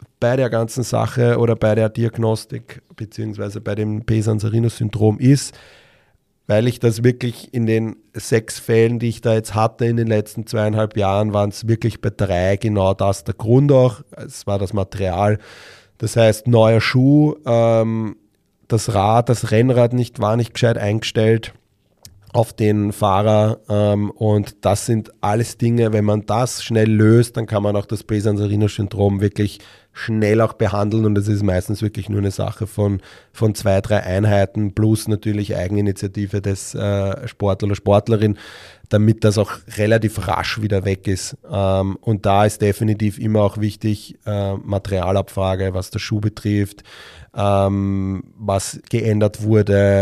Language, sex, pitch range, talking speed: German, male, 100-115 Hz, 155 wpm